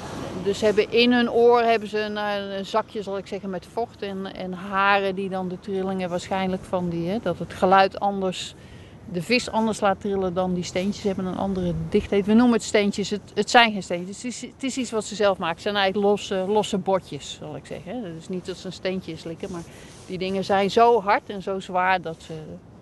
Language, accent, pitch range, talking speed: English, Dutch, 180-215 Hz, 235 wpm